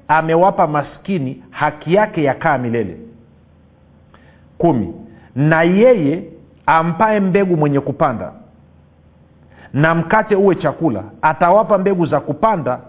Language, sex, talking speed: Swahili, male, 100 wpm